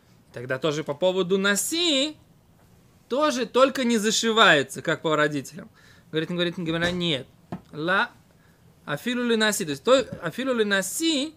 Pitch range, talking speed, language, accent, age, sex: 170-235 Hz, 120 wpm, Russian, native, 20-39, male